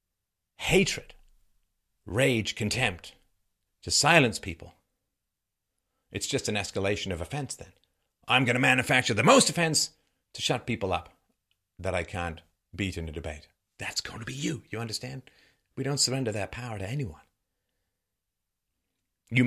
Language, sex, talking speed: English, male, 140 wpm